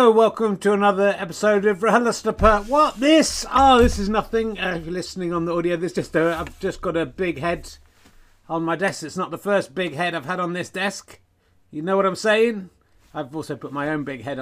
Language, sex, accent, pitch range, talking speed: English, male, British, 130-200 Hz, 225 wpm